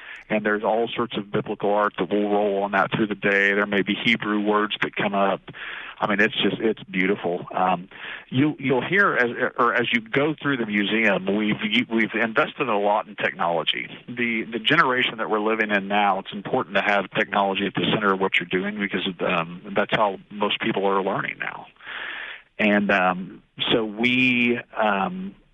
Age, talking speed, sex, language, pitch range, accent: 40-59, 195 wpm, male, English, 100-115 Hz, American